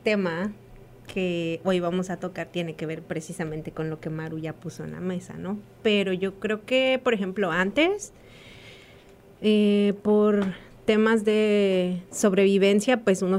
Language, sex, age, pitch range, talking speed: English, female, 30-49, 170-210 Hz, 150 wpm